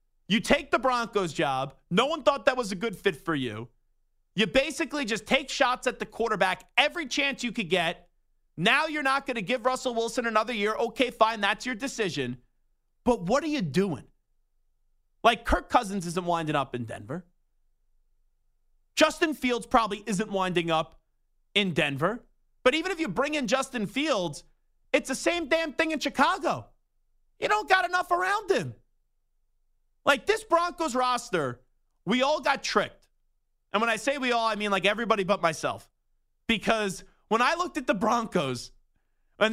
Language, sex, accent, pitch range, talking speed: English, male, American, 185-285 Hz, 170 wpm